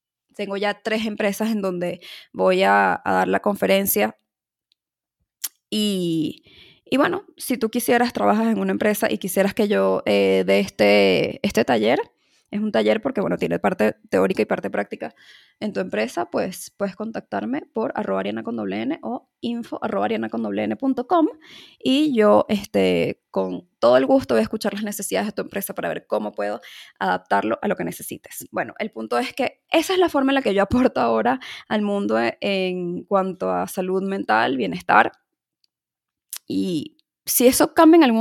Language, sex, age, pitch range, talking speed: Spanish, female, 20-39, 170-245 Hz, 170 wpm